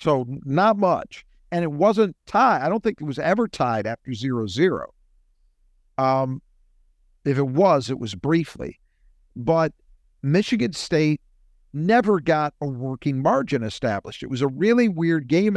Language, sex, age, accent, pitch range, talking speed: English, male, 50-69, American, 125-170 Hz, 145 wpm